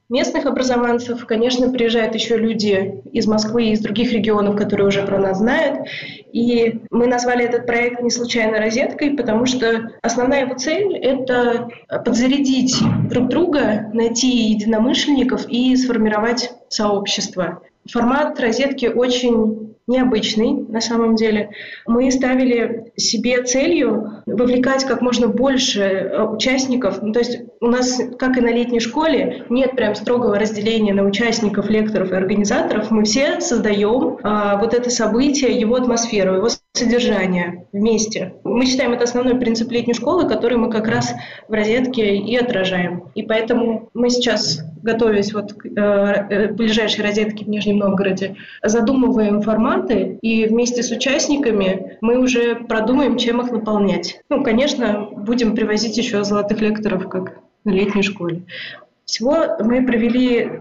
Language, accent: Russian, native